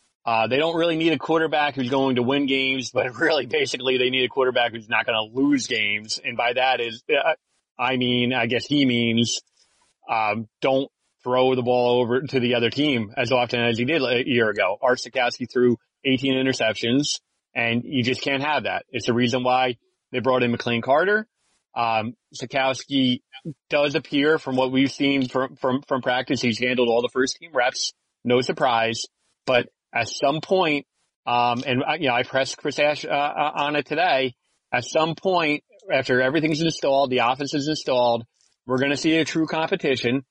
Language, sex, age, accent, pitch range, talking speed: English, male, 30-49, American, 125-145 Hz, 190 wpm